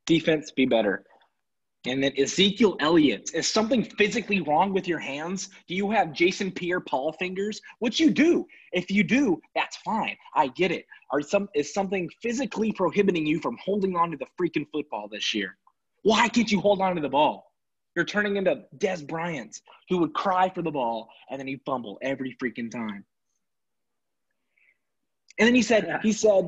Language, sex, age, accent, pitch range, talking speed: English, male, 20-39, American, 140-205 Hz, 180 wpm